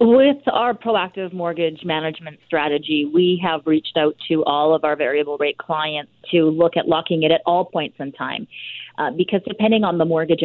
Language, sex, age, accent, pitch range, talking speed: English, female, 30-49, American, 160-195 Hz, 190 wpm